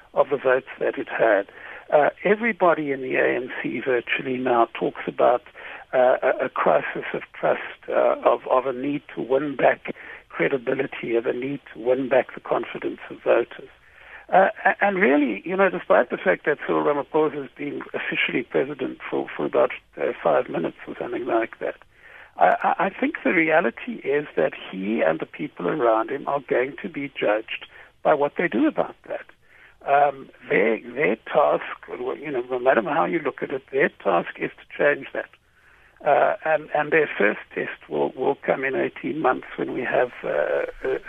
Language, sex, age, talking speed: English, male, 60-79, 180 wpm